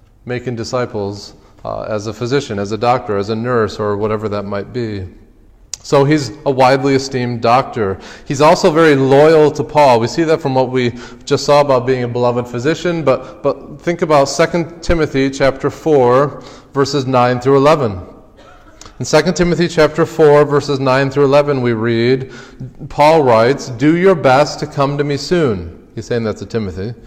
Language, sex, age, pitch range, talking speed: English, male, 30-49, 110-140 Hz, 175 wpm